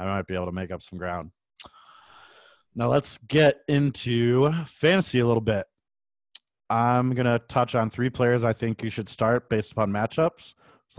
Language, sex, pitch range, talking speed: English, male, 105-115 Hz, 180 wpm